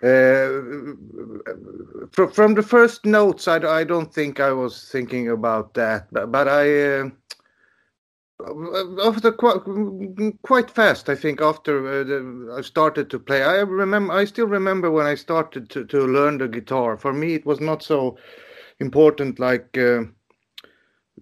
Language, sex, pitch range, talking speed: English, male, 130-160 Hz, 145 wpm